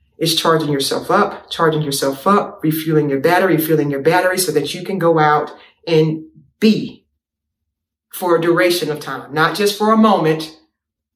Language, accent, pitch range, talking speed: English, American, 165-215 Hz, 165 wpm